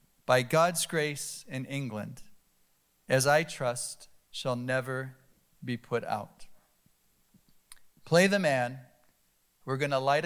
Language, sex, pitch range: English, male, 150-215 Hz